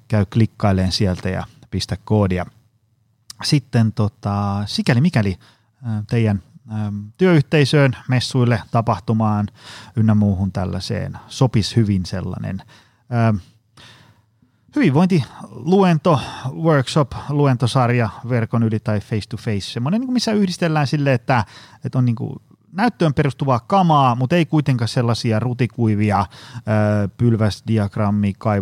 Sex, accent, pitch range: male, native, 105-130 Hz